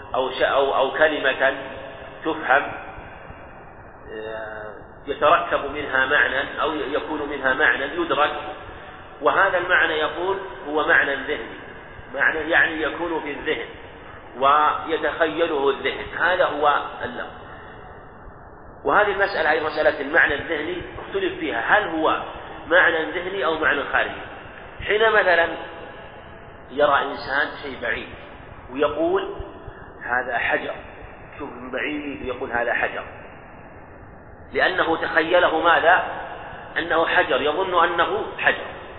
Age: 40-59